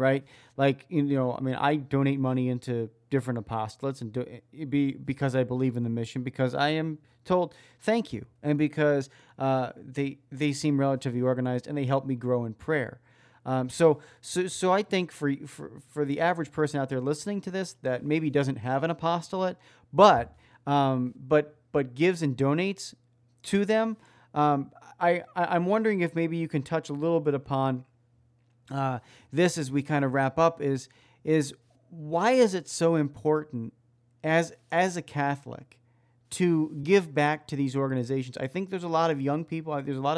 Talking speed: 185 wpm